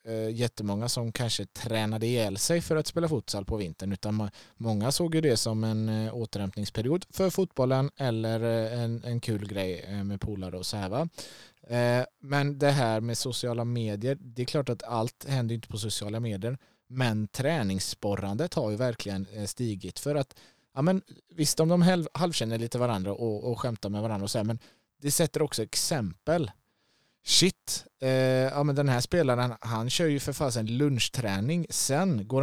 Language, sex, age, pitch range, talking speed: Swedish, male, 20-39, 110-140 Hz, 170 wpm